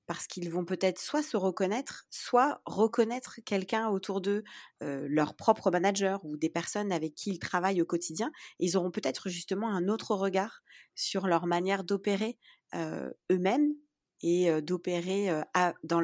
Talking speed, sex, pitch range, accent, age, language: 155 wpm, female, 170-210 Hz, French, 40-59, French